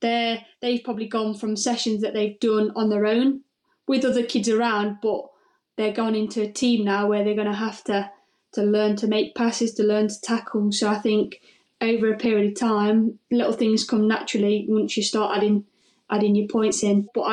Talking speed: 205 wpm